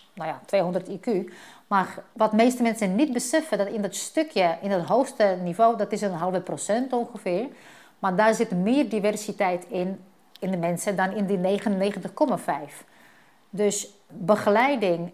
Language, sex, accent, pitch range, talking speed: Dutch, female, Dutch, 190-225 Hz, 155 wpm